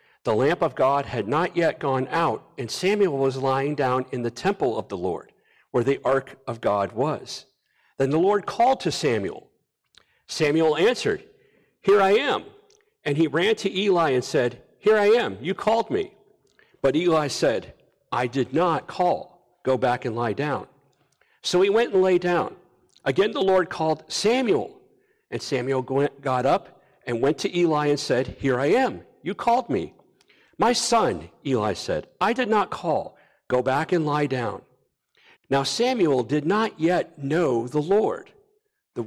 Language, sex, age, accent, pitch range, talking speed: English, male, 50-69, American, 135-215 Hz, 170 wpm